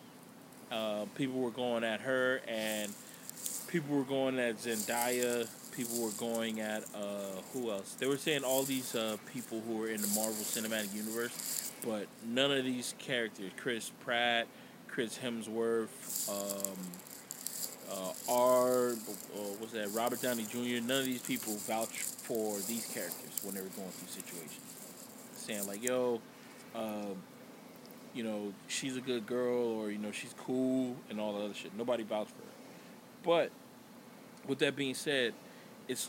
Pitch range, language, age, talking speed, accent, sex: 110-140 Hz, English, 20-39, 160 wpm, American, male